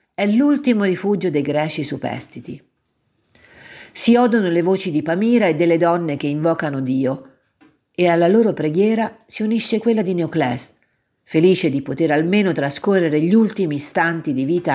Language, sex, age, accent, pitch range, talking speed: Italian, female, 50-69, native, 155-210 Hz, 150 wpm